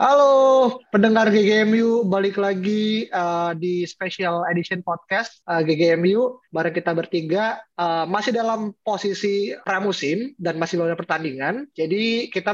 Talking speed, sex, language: 125 wpm, male, Indonesian